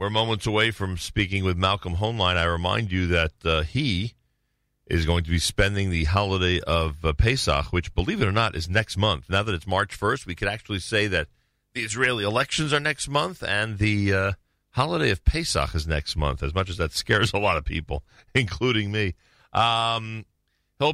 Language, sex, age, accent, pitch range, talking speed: English, male, 40-59, American, 80-105 Hz, 200 wpm